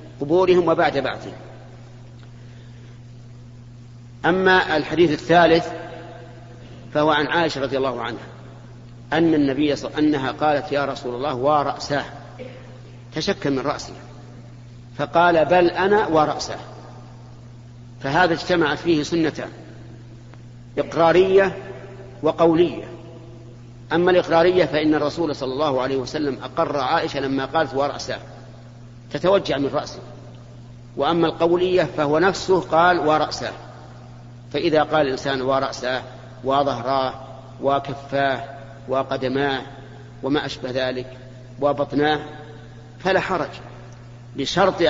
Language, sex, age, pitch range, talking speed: Arabic, male, 50-69, 120-155 Hz, 95 wpm